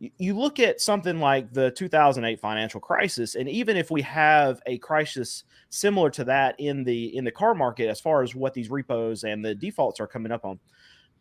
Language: English